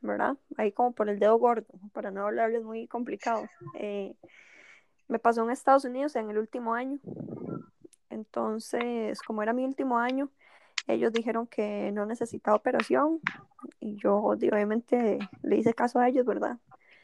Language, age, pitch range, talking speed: Spanish, 10-29, 220-265 Hz, 150 wpm